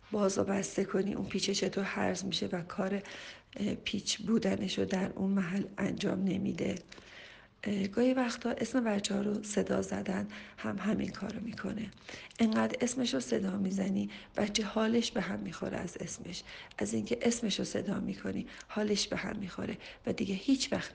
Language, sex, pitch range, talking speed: Persian, female, 190-220 Hz, 160 wpm